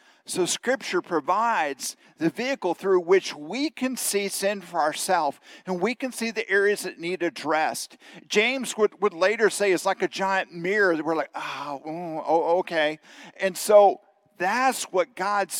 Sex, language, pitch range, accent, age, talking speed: male, English, 135-200 Hz, American, 50-69, 165 wpm